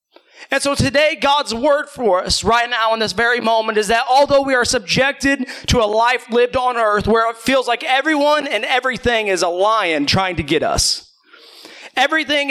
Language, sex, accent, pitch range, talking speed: English, male, American, 220-270 Hz, 190 wpm